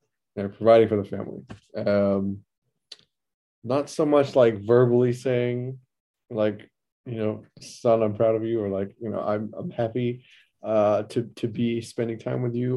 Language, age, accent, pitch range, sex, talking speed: English, 20-39, American, 100-120 Hz, male, 165 wpm